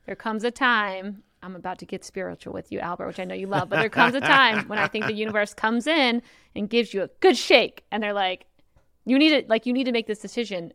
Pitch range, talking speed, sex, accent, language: 190-235 Hz, 270 wpm, female, American, English